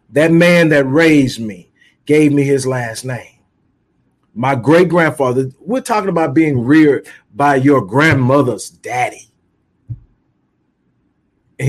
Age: 40-59